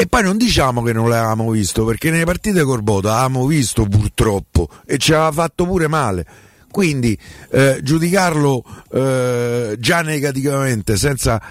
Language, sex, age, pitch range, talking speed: Italian, male, 50-69, 105-145 Hz, 145 wpm